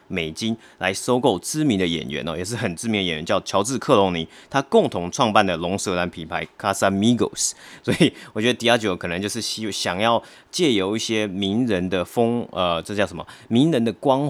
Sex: male